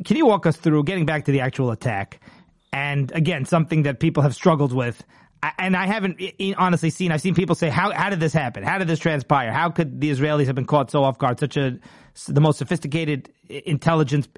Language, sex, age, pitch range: English, male, 30-49, 145-175 Hz